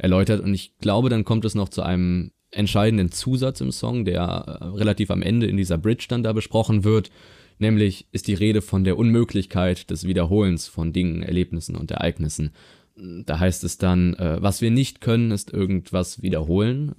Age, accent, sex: 20-39, German, male